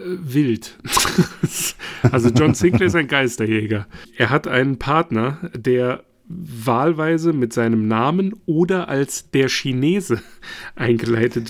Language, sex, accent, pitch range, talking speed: German, male, German, 115-155 Hz, 110 wpm